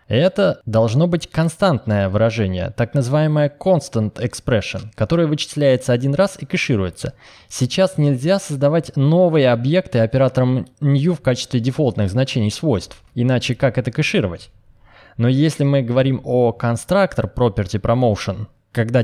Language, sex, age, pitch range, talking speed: Russian, male, 20-39, 110-145 Hz, 125 wpm